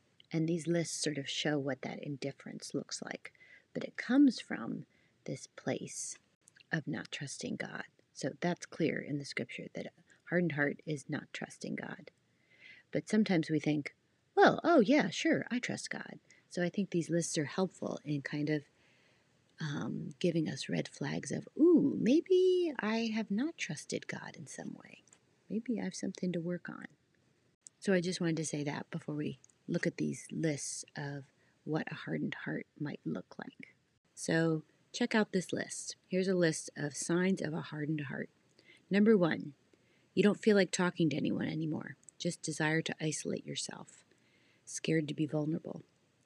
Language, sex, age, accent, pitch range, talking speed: English, female, 30-49, American, 150-195 Hz, 175 wpm